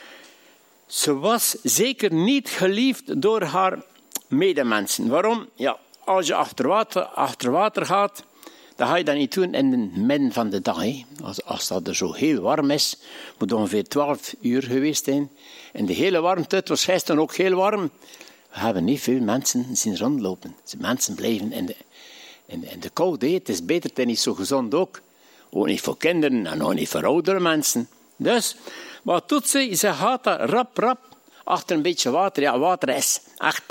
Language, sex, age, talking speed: Dutch, male, 60-79, 185 wpm